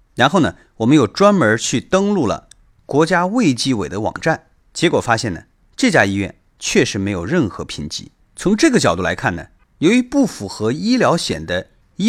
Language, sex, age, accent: Chinese, male, 30-49, native